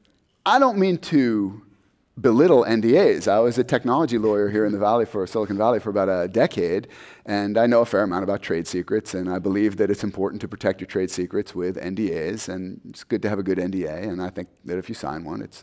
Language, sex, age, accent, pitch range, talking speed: English, male, 30-49, American, 100-120 Hz, 235 wpm